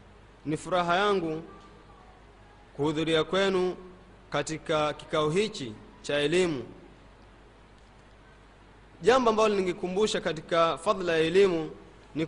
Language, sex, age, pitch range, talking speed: Swahili, male, 30-49, 155-220 Hz, 90 wpm